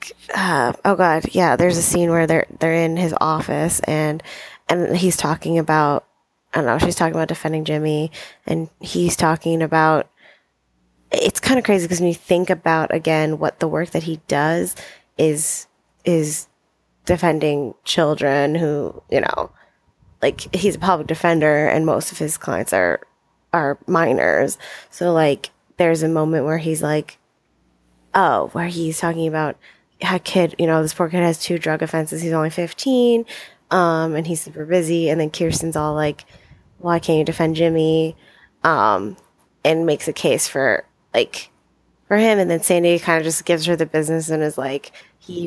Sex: female